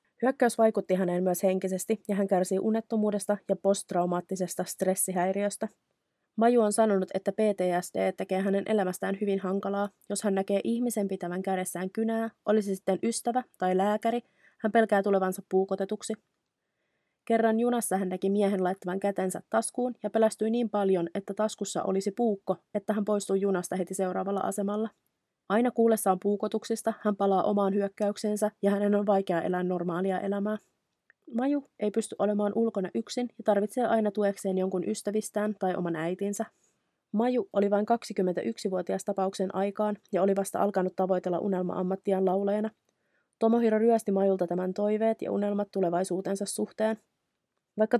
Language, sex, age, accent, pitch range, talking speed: Finnish, female, 20-39, native, 190-220 Hz, 140 wpm